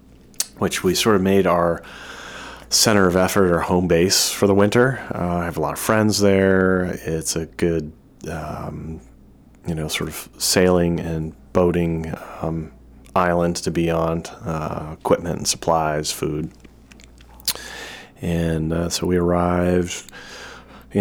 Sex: male